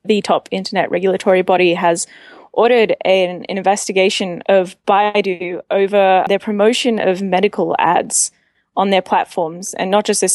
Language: English